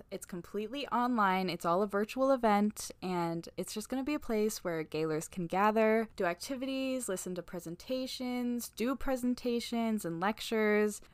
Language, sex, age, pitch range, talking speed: English, female, 10-29, 180-235 Hz, 155 wpm